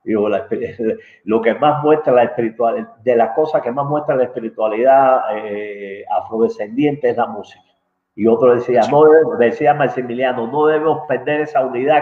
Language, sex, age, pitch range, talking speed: English, male, 50-69, 125-180 Hz, 160 wpm